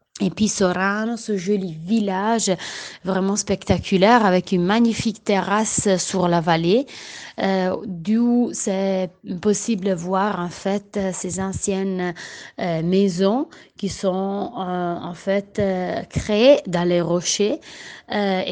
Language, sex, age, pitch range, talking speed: Italian, female, 30-49, 185-215 Hz, 125 wpm